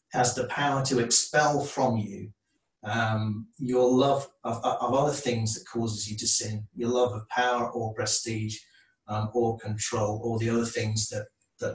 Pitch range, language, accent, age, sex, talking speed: 110-125 Hz, English, British, 30-49, male, 175 wpm